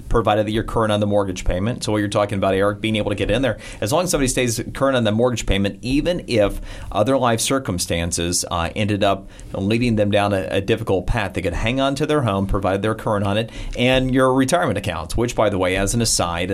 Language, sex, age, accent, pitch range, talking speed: English, male, 40-59, American, 95-115 Hz, 245 wpm